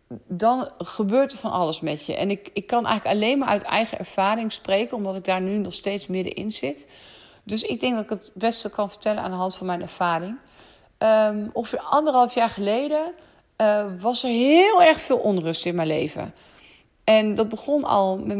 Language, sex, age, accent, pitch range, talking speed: Dutch, female, 40-59, Dutch, 180-215 Hz, 195 wpm